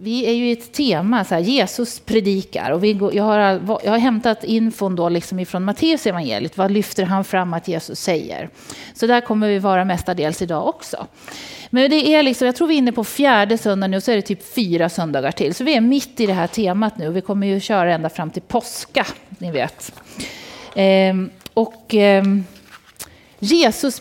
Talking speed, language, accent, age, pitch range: 205 wpm, Swedish, native, 40-59, 195-250 Hz